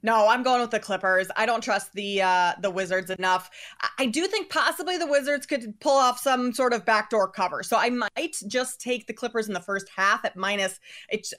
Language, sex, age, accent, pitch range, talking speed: English, female, 20-39, American, 190-230 Hz, 220 wpm